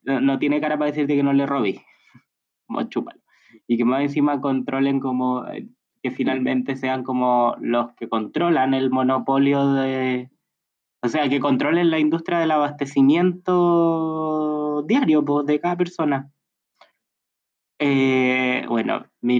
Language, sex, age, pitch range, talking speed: Spanish, male, 20-39, 115-145 Hz, 125 wpm